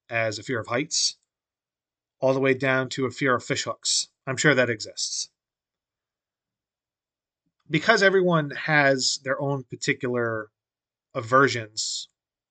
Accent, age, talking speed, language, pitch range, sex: American, 30-49, 125 wpm, English, 115-145 Hz, male